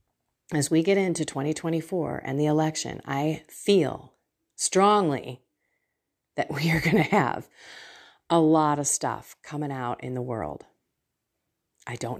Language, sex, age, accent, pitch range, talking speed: English, female, 40-59, American, 150-210 Hz, 140 wpm